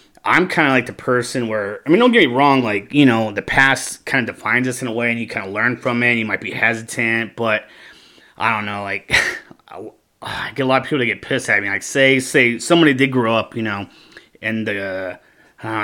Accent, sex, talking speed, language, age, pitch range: American, male, 245 wpm, English, 30-49, 110-135 Hz